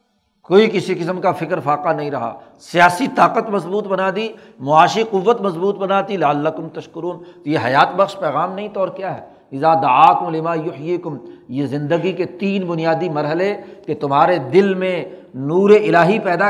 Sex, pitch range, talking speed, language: male, 160-195 Hz, 170 wpm, Urdu